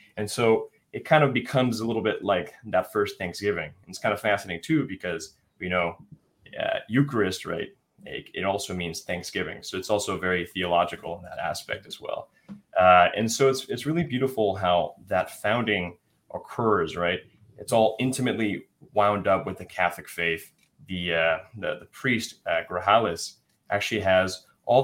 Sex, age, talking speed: male, 20-39, 170 wpm